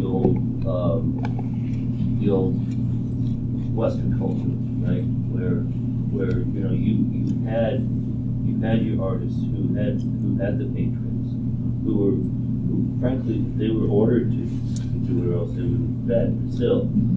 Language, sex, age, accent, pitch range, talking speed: English, male, 40-59, American, 120-125 Hz, 125 wpm